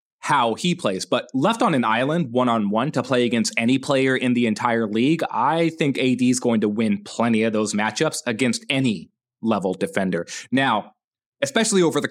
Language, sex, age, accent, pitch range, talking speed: English, male, 30-49, American, 115-170 Hz, 185 wpm